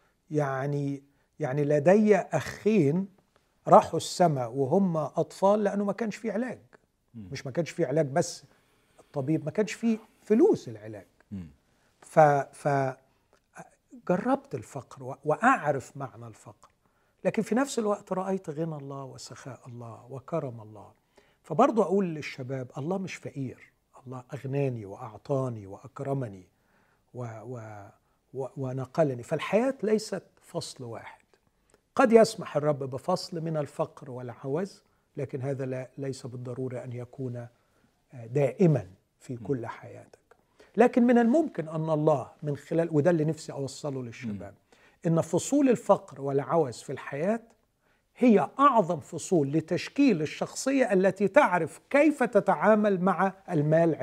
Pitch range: 130-190 Hz